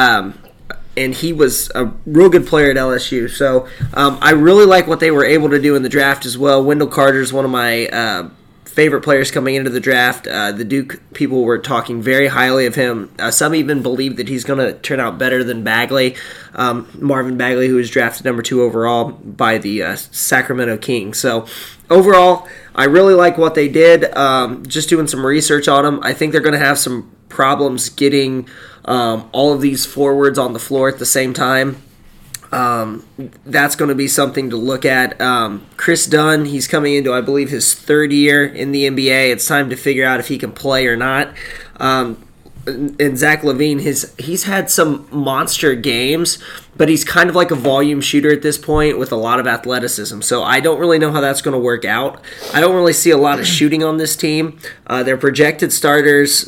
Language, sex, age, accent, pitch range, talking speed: English, male, 20-39, American, 130-150 Hz, 210 wpm